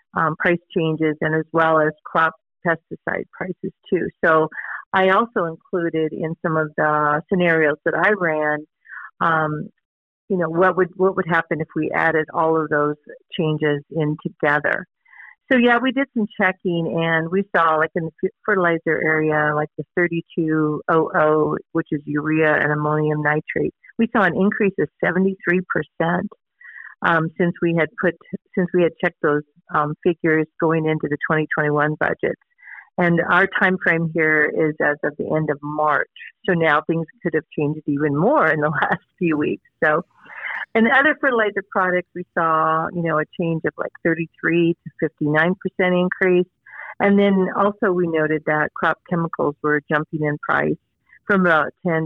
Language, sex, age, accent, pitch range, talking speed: English, female, 50-69, American, 155-180 Hz, 170 wpm